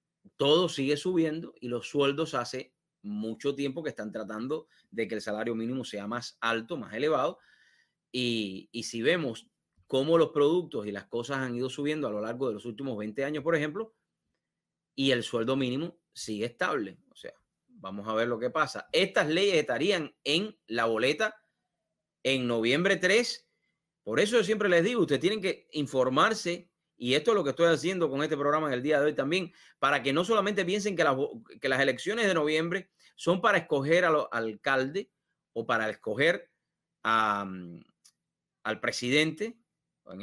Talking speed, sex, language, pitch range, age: 175 wpm, male, English, 120-170 Hz, 30-49